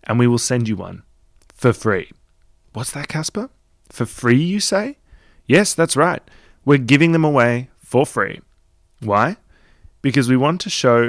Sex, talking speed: male, 160 wpm